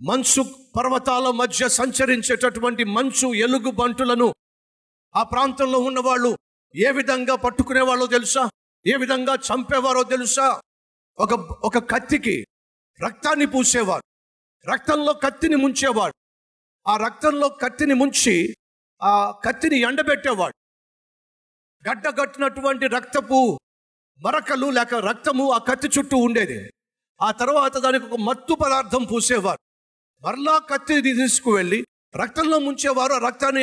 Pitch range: 245-280 Hz